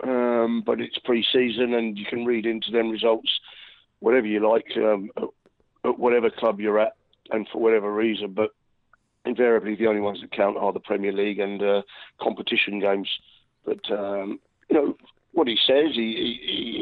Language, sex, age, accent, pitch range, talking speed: English, male, 40-59, British, 110-125 Hz, 170 wpm